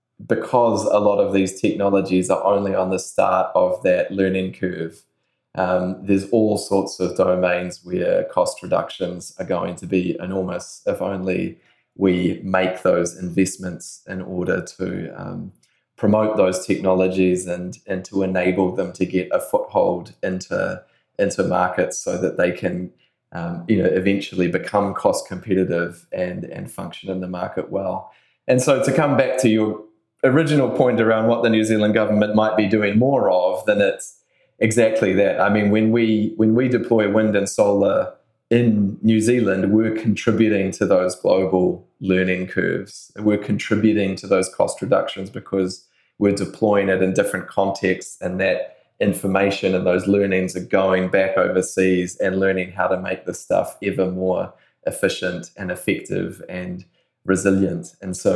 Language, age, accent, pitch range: English, 20-39, Australian, 95-110 Hz